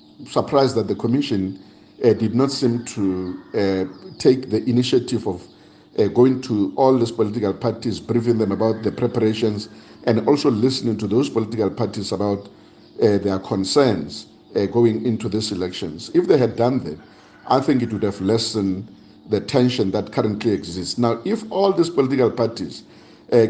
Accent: South African